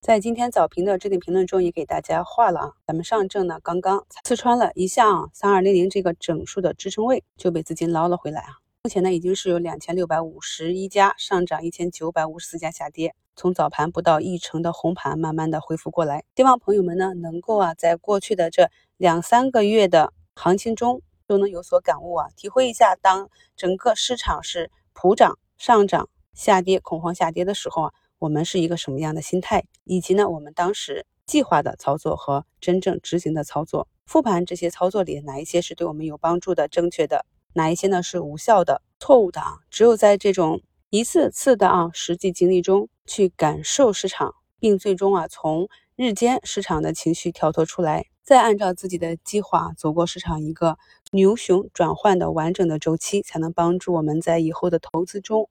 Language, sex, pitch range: Chinese, female, 165-200 Hz